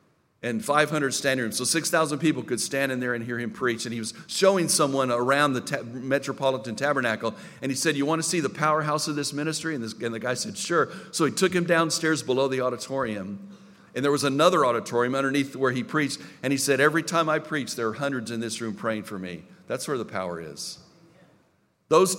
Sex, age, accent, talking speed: male, 50-69, American, 220 wpm